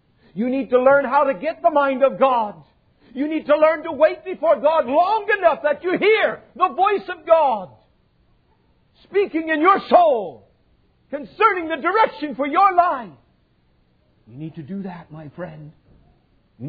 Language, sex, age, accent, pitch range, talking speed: English, male, 50-69, American, 185-295 Hz, 165 wpm